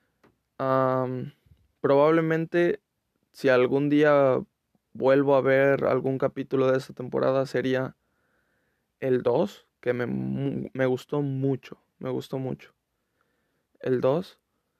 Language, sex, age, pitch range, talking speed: Spanish, male, 20-39, 125-140 Hz, 105 wpm